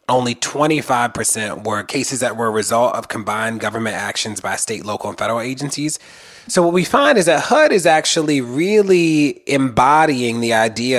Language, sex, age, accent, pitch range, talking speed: English, male, 30-49, American, 120-150 Hz, 170 wpm